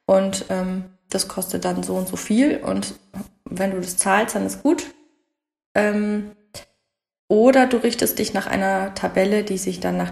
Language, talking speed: German, 170 wpm